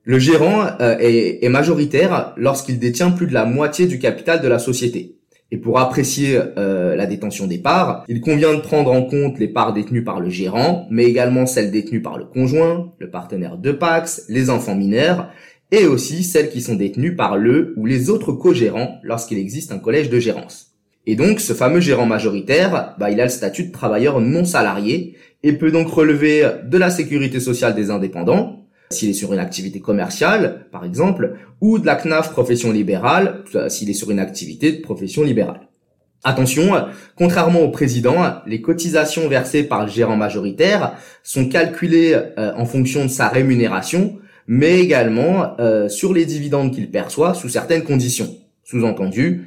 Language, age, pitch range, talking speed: French, 20-39, 115-165 Hz, 170 wpm